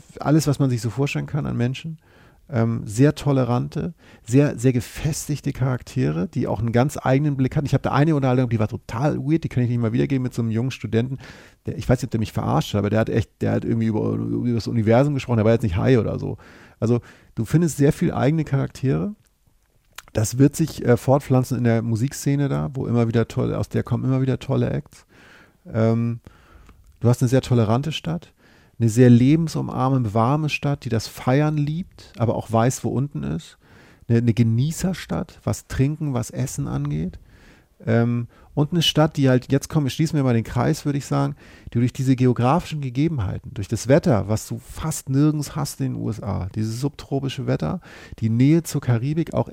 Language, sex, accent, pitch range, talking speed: German, male, German, 115-145 Hz, 205 wpm